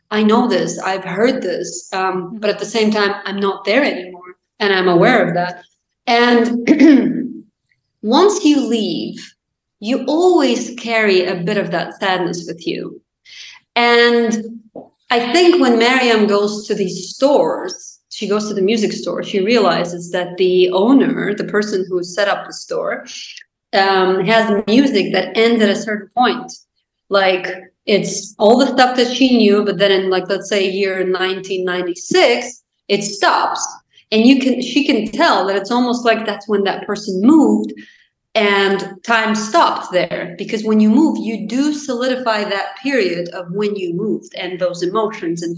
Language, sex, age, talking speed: English, female, 30-49, 165 wpm